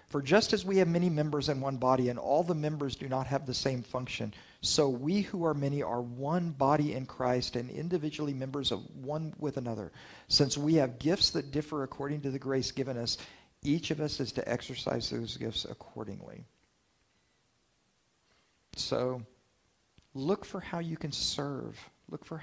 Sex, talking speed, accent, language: male, 180 wpm, American, English